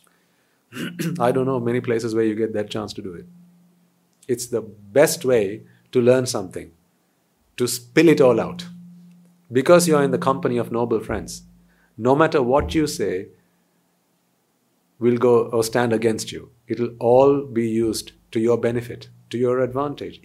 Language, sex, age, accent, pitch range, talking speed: English, male, 50-69, Indian, 115-175 Hz, 165 wpm